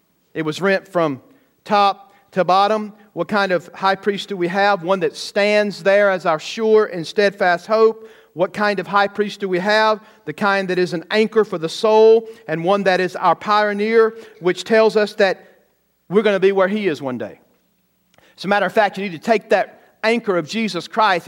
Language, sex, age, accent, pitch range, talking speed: English, male, 40-59, American, 165-210 Hz, 210 wpm